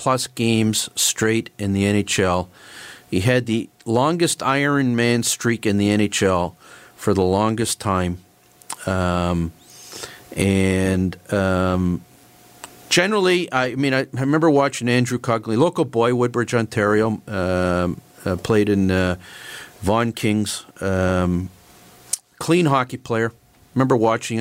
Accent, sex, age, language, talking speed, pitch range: American, male, 50-69, English, 125 wpm, 95-125 Hz